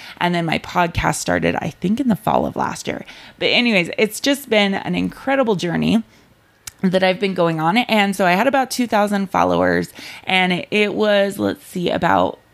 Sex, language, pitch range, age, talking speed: female, English, 175-235 Hz, 20-39, 185 wpm